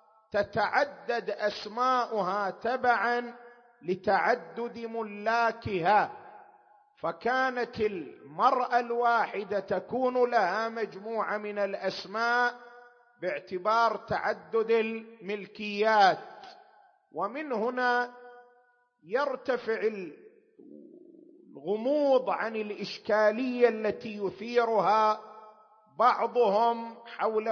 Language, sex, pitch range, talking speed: Arabic, male, 195-245 Hz, 55 wpm